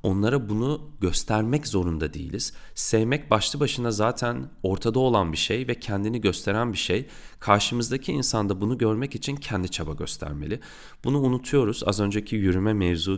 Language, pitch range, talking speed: Turkish, 85-115 Hz, 145 wpm